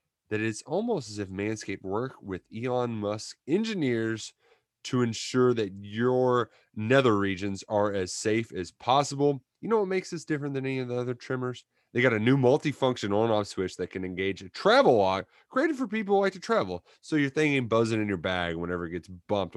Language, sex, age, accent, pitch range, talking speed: English, male, 30-49, American, 100-130 Hz, 200 wpm